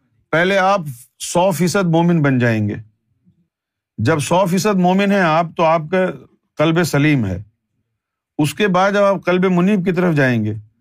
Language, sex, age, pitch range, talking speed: Urdu, male, 50-69, 120-185 Hz, 170 wpm